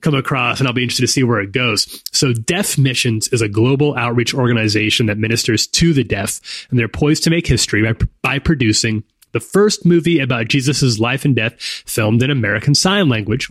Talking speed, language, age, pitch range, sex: 205 wpm, English, 30-49, 115-150 Hz, male